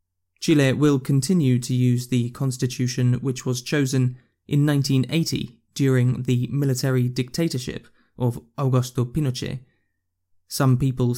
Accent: British